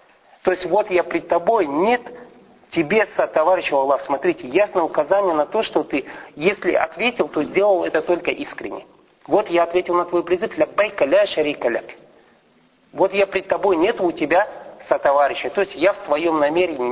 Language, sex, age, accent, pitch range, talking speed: Russian, male, 40-59, native, 150-210 Hz, 170 wpm